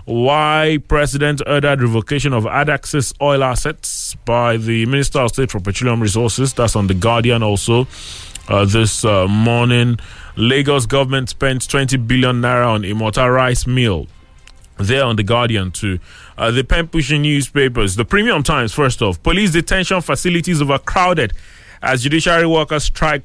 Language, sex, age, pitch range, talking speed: English, male, 20-39, 110-145 Hz, 150 wpm